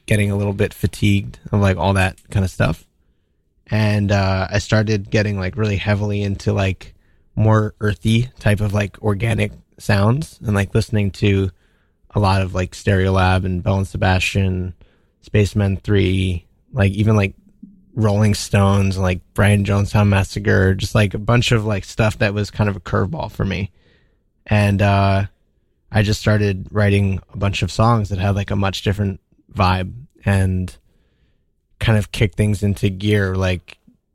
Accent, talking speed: American, 165 wpm